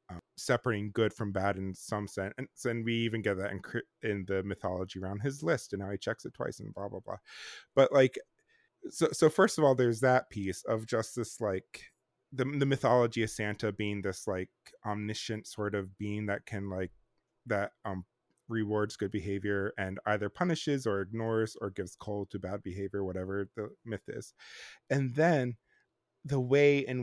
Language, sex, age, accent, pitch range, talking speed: English, male, 20-39, American, 100-125 Hz, 190 wpm